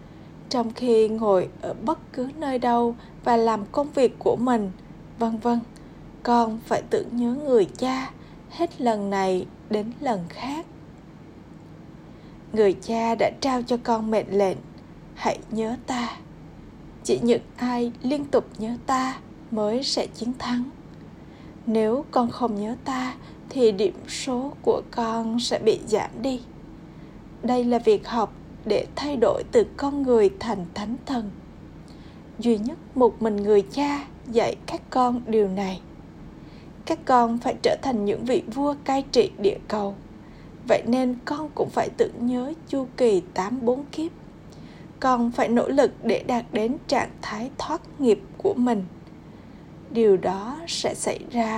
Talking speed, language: 150 wpm, Vietnamese